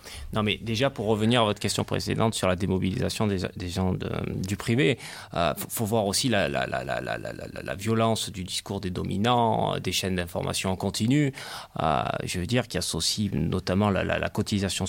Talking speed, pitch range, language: 205 wpm, 95-125 Hz, French